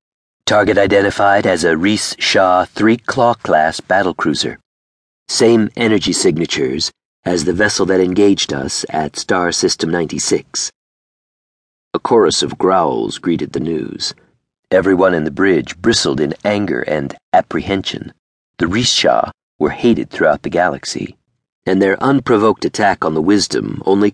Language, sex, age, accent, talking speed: English, male, 40-59, American, 125 wpm